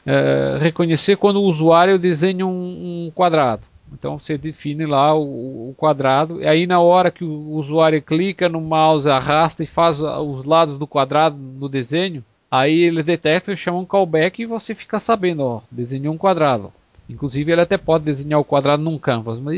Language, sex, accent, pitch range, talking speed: Portuguese, male, Brazilian, 145-185 Hz, 185 wpm